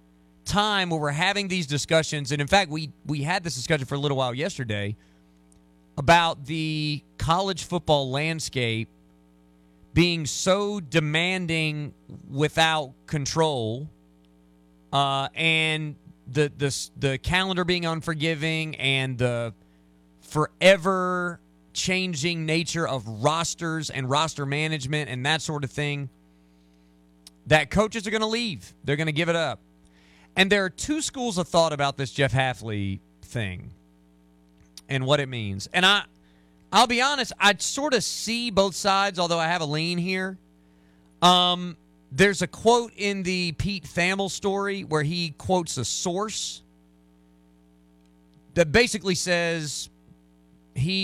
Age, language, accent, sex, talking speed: 30-49, English, American, male, 135 wpm